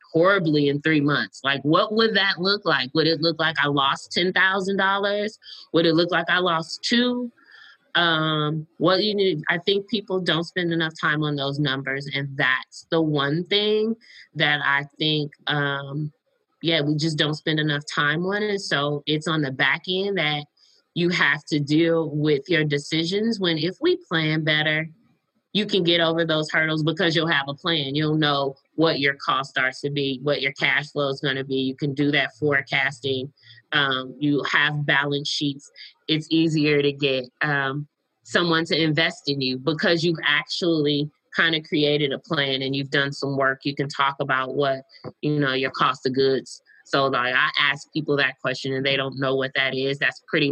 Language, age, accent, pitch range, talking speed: English, 20-39, American, 140-170 Hz, 195 wpm